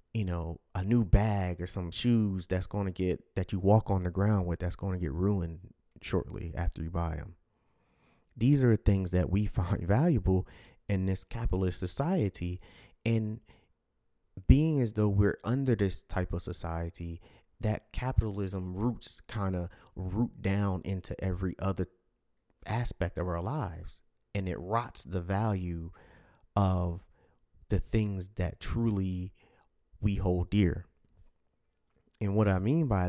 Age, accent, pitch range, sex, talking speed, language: 30-49, American, 90-110 Hz, male, 150 wpm, English